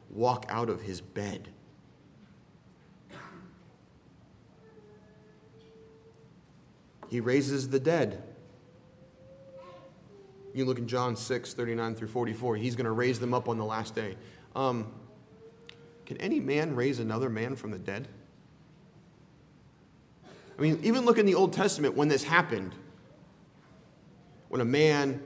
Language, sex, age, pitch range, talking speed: English, male, 30-49, 130-170 Hz, 125 wpm